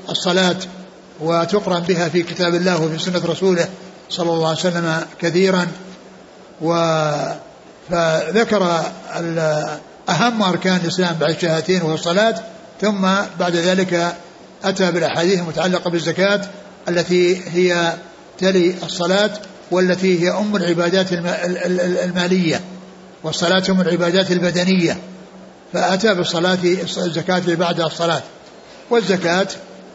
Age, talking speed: 60-79, 90 wpm